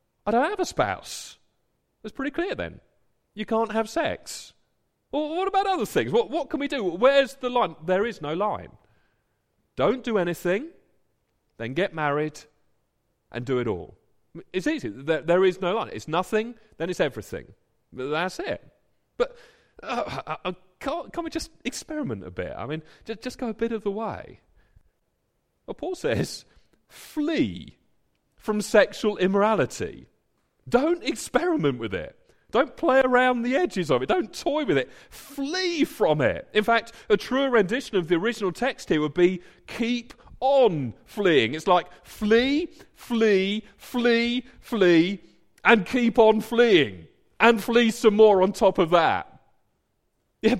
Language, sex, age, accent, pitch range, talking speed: English, male, 40-59, British, 175-255 Hz, 160 wpm